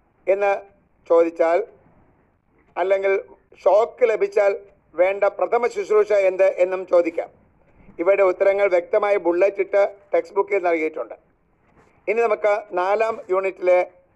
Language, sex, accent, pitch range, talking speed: Malayalam, male, native, 180-205 Hz, 95 wpm